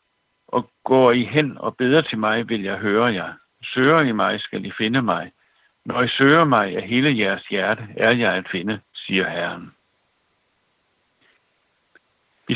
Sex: male